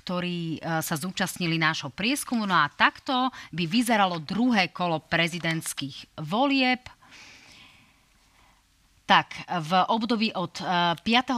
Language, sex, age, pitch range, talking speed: Slovak, female, 30-49, 175-225 Hz, 100 wpm